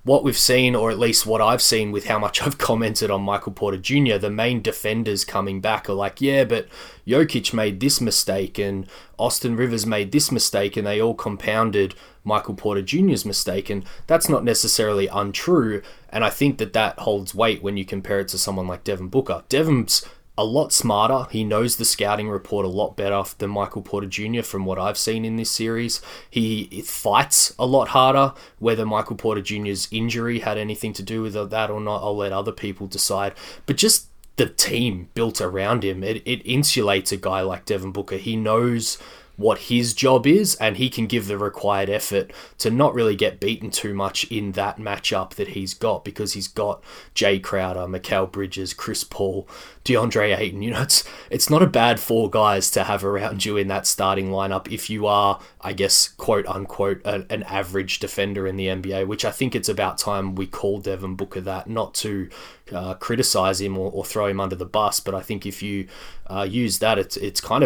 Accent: Australian